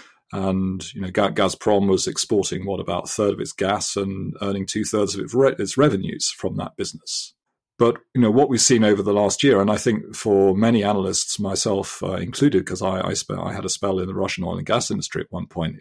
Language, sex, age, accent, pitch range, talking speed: English, male, 40-59, British, 95-125 Hz, 225 wpm